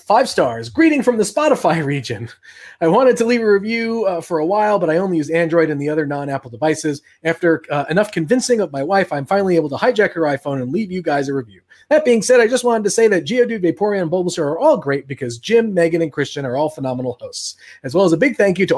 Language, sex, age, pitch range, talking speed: English, male, 30-49, 140-195 Hz, 260 wpm